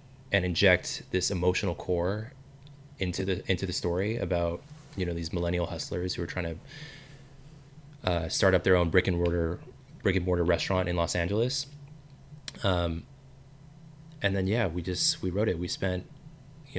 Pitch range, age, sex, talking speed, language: 90-135 Hz, 20-39, male, 170 wpm, English